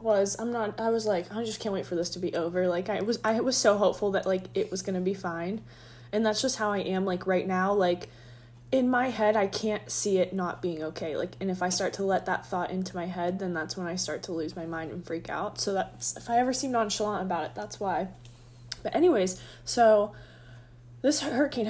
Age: 20-39